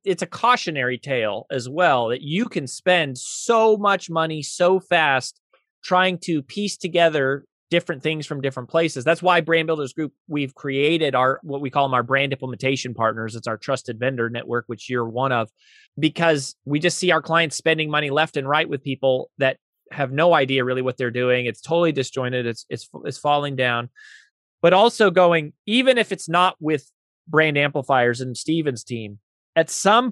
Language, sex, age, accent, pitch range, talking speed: English, male, 30-49, American, 135-180 Hz, 185 wpm